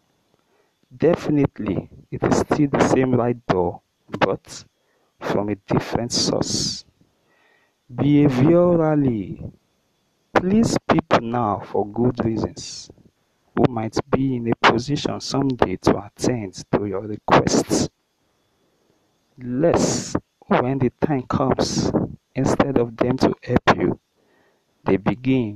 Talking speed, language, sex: 105 wpm, English, male